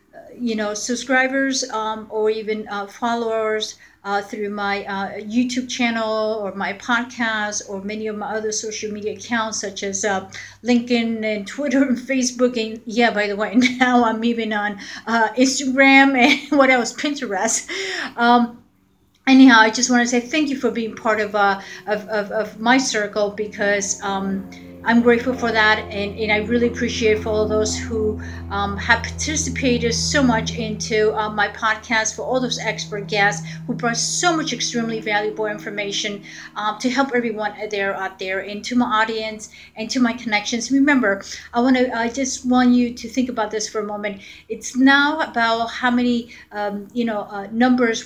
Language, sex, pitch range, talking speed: English, female, 205-245 Hz, 175 wpm